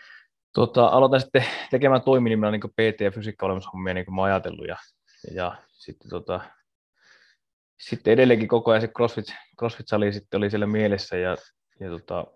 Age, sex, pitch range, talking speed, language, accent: 20-39, male, 95-110 Hz, 145 wpm, Finnish, native